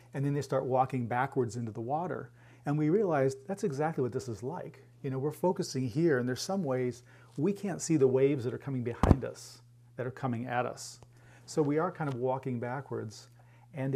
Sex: male